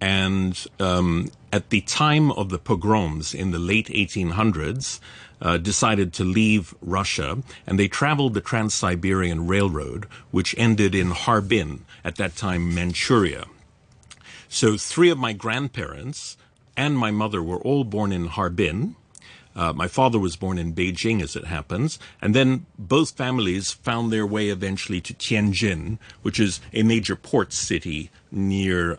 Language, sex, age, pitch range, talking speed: English, male, 50-69, 90-115 Hz, 145 wpm